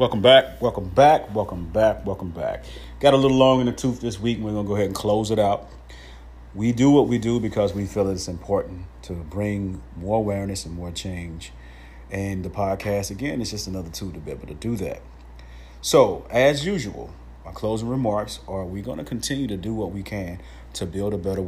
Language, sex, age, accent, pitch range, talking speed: English, male, 30-49, American, 85-115 Hz, 220 wpm